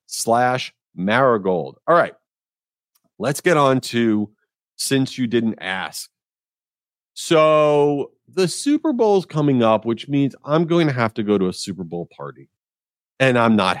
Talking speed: 150 wpm